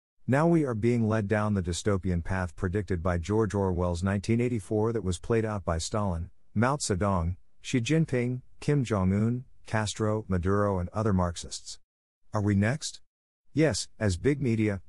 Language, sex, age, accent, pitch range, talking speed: English, male, 50-69, American, 90-115 Hz, 155 wpm